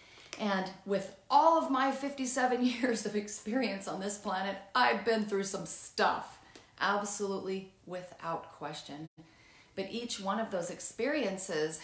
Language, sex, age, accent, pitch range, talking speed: English, female, 40-59, American, 185-245 Hz, 130 wpm